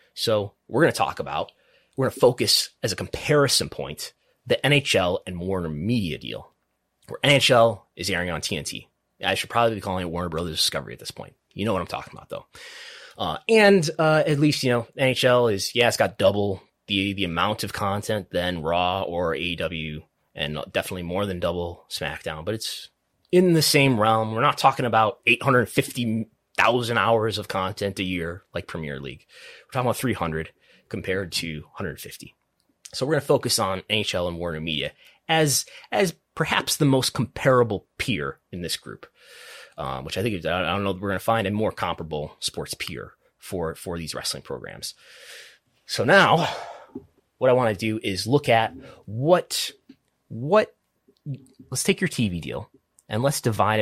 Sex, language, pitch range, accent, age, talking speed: male, English, 90-130 Hz, American, 20-39, 180 wpm